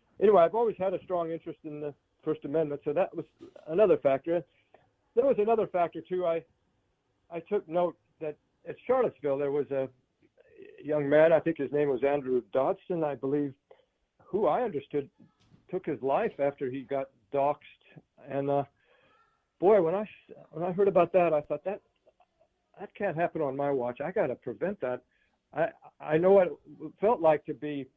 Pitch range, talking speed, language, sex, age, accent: 140-175 Hz, 180 wpm, English, male, 60-79, American